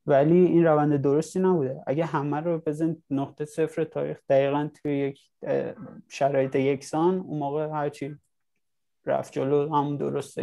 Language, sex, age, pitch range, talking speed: Persian, male, 20-39, 140-155 Hz, 140 wpm